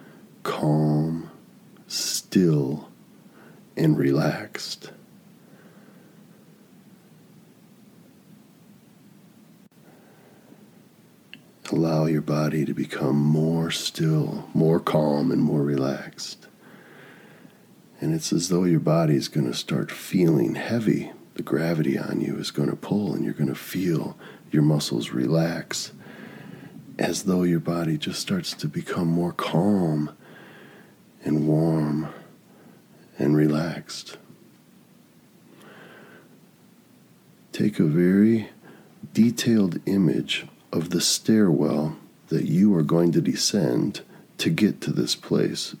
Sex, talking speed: male, 100 wpm